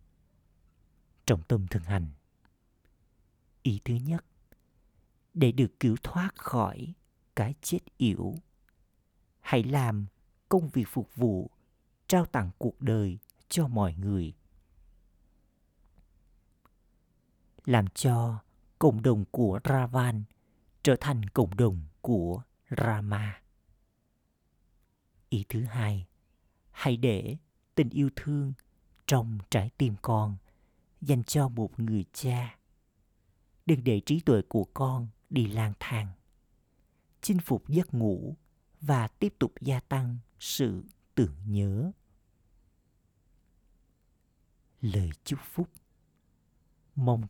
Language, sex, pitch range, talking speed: Vietnamese, male, 95-130 Hz, 105 wpm